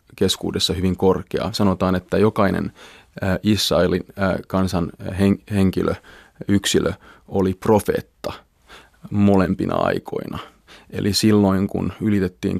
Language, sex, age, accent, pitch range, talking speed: Finnish, male, 30-49, native, 95-100 Hz, 85 wpm